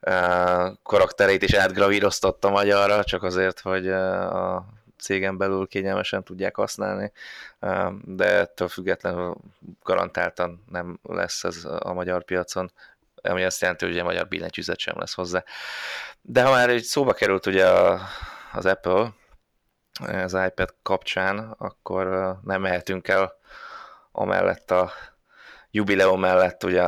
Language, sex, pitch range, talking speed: Hungarian, male, 90-95 Hz, 120 wpm